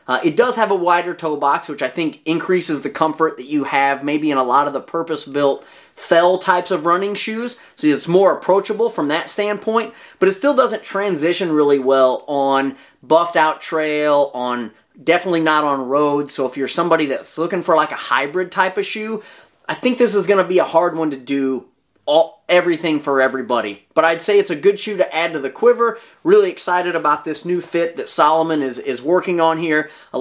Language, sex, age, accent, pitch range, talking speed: English, male, 30-49, American, 150-195 Hz, 210 wpm